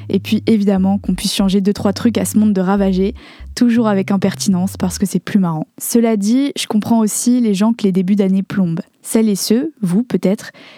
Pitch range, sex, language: 195-230 Hz, female, French